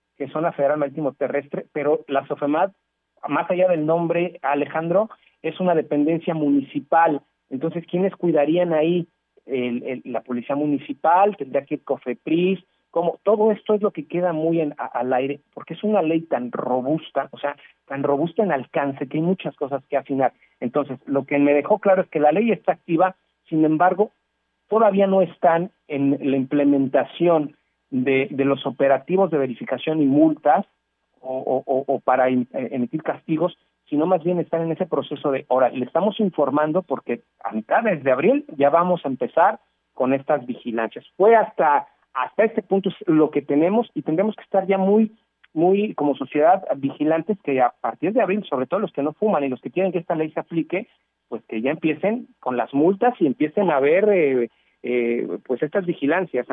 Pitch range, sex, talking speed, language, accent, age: 135-185 Hz, male, 185 wpm, Spanish, Mexican, 40-59